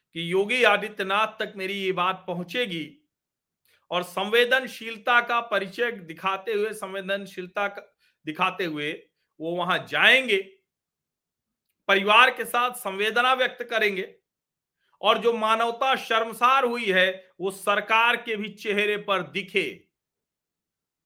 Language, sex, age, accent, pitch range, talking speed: Hindi, male, 40-59, native, 180-255 Hz, 110 wpm